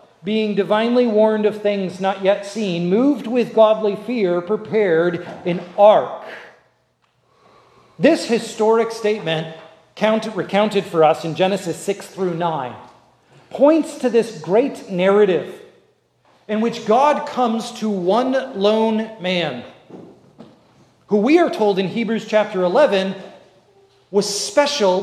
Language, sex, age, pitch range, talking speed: English, male, 40-59, 175-225 Hz, 115 wpm